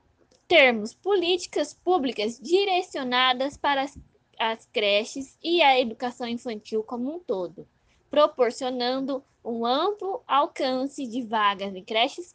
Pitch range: 225-300 Hz